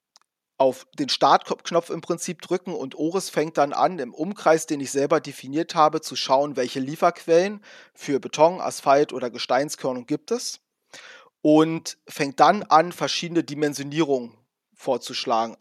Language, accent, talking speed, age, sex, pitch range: German, German, 140 wpm, 30-49, male, 135-165 Hz